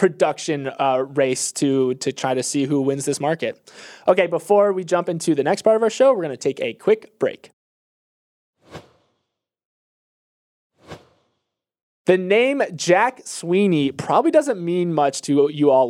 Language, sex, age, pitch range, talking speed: English, male, 20-39, 145-185 Hz, 155 wpm